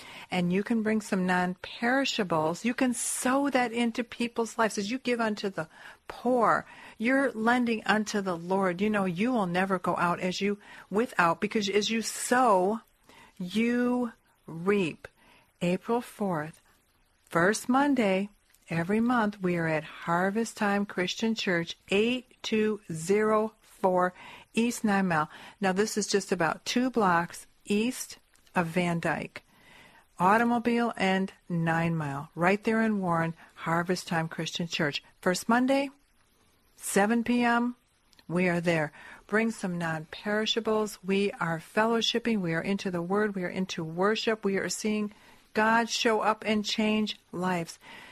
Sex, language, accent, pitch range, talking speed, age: female, English, American, 180-225 Hz, 140 wpm, 50-69